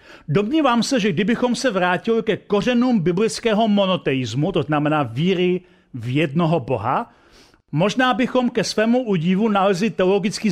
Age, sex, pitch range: 40-59, male, 165-215 Hz